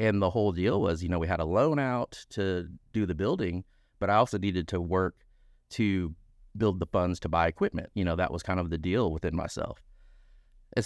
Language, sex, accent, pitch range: English, male, American, 80-100 Hz